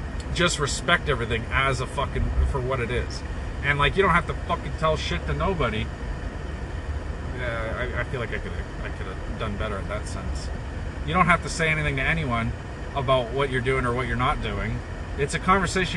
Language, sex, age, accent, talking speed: English, male, 30-49, American, 205 wpm